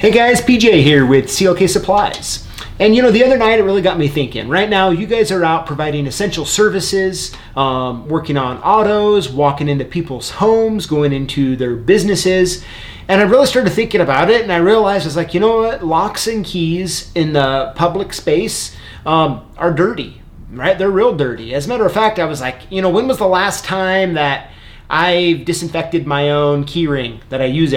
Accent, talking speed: American, 205 wpm